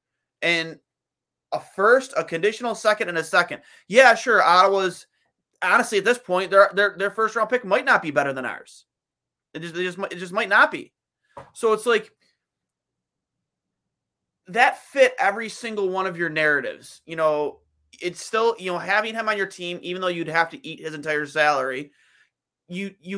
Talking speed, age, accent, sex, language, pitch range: 180 wpm, 30-49, American, male, English, 145-190 Hz